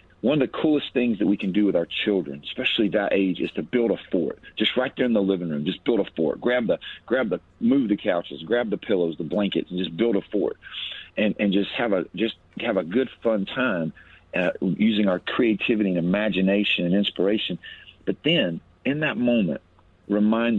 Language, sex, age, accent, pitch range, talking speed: English, male, 50-69, American, 95-115 Hz, 215 wpm